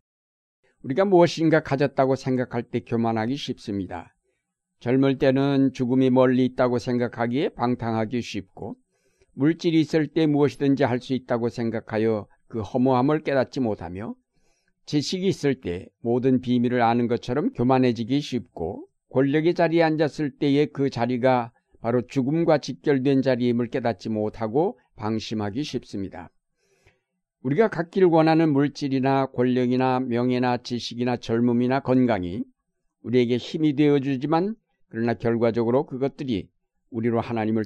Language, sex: Korean, male